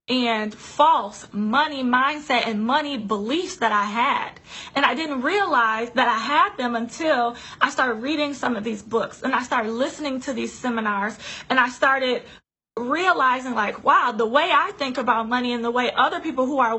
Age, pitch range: 20-39, 235-285 Hz